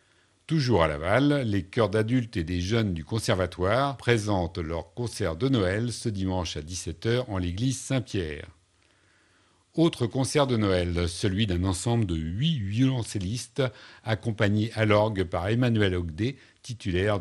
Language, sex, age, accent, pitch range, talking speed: French, male, 50-69, French, 90-115 Hz, 140 wpm